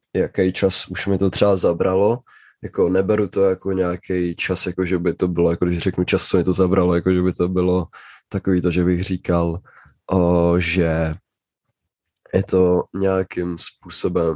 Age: 20-39